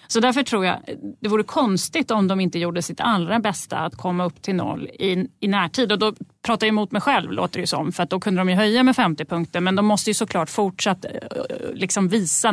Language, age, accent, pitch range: Swedish, 30-49, native, 170-230 Hz